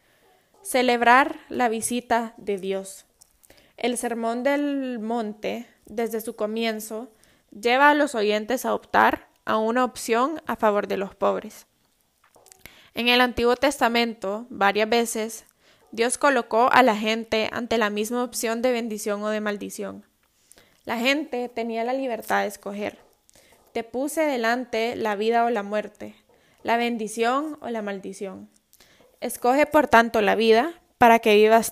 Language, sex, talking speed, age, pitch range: Spanish, female, 140 wpm, 10-29, 215-250 Hz